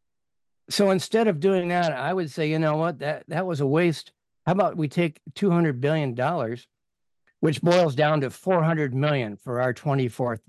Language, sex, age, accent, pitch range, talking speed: English, male, 60-79, American, 130-175 Hz, 175 wpm